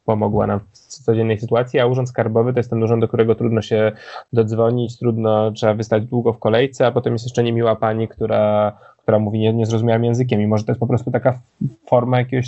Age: 20-39